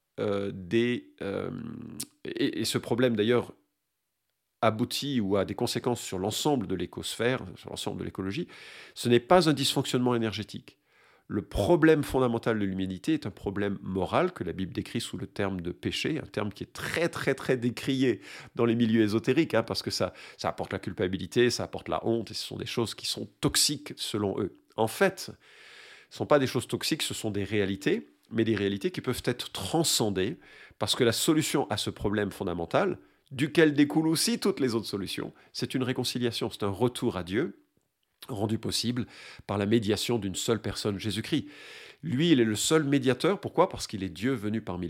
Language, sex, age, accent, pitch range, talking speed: French, male, 50-69, French, 100-130 Hz, 190 wpm